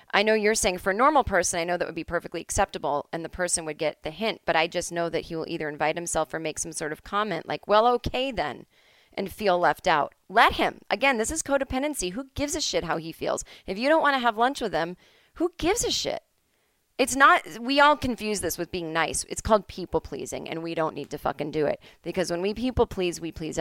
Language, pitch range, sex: English, 165-220 Hz, female